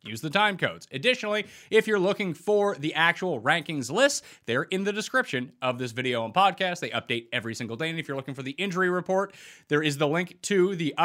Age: 30-49